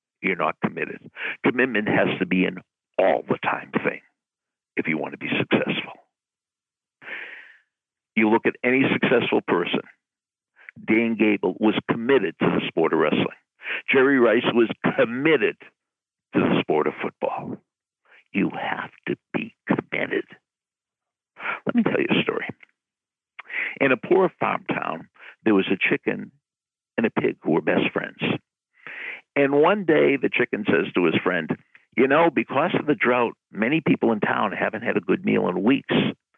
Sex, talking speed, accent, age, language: male, 155 wpm, American, 60-79, English